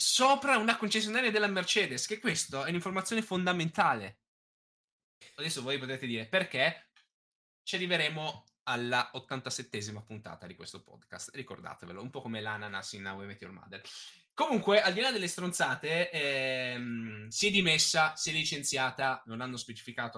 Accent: native